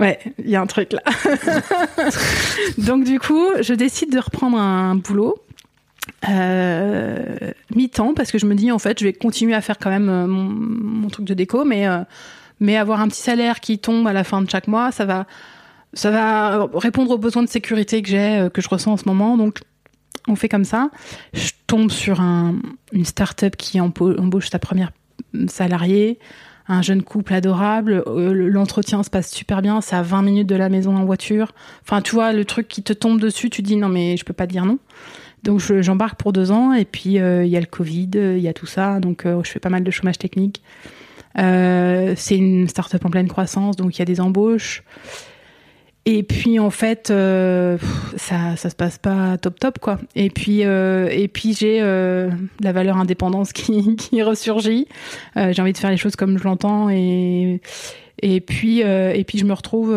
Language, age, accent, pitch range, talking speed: French, 20-39, French, 185-225 Hz, 210 wpm